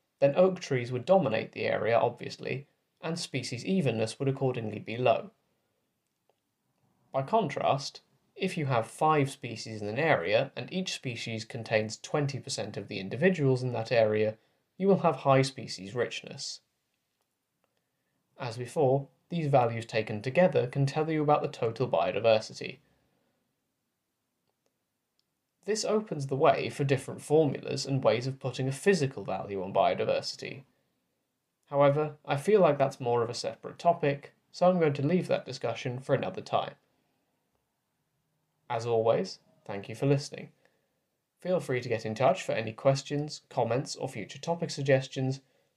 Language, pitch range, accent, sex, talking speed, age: English, 120-155 Hz, British, male, 145 wpm, 20-39